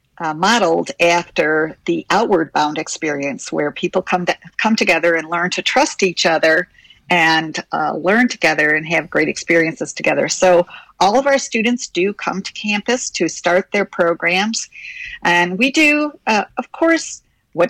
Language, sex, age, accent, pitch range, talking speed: English, female, 50-69, American, 175-250 Hz, 165 wpm